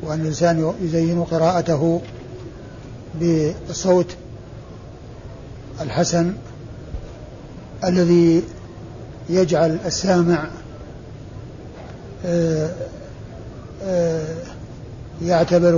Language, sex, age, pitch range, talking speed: Arabic, male, 60-79, 125-180 Hz, 40 wpm